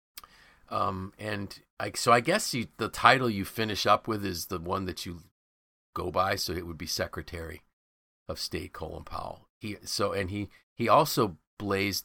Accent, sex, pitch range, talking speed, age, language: American, male, 85-105 Hz, 180 wpm, 50-69, English